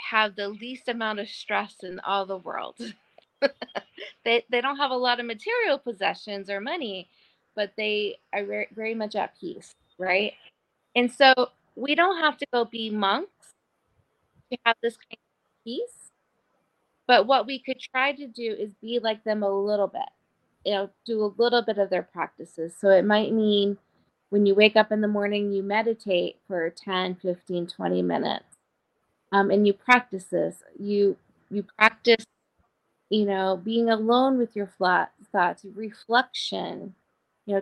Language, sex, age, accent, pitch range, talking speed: English, female, 20-39, American, 195-235 Hz, 165 wpm